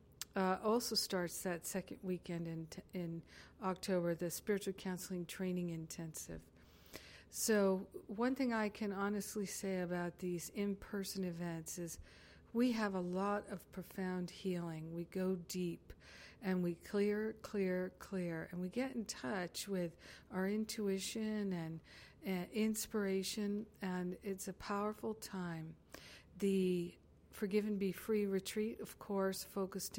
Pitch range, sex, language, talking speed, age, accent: 175-210 Hz, female, English, 130 wpm, 50-69, American